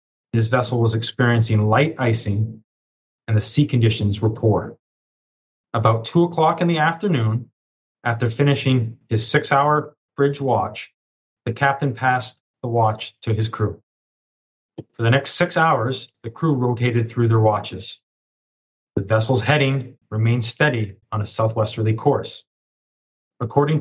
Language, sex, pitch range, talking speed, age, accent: English, male, 110-140 Hz, 135 wpm, 30-49, American